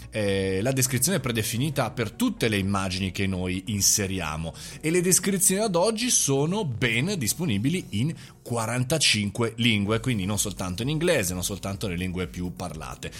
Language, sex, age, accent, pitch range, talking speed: Italian, male, 30-49, native, 100-135 Hz, 155 wpm